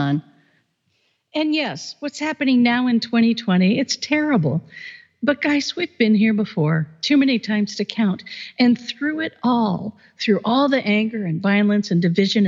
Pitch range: 180-245 Hz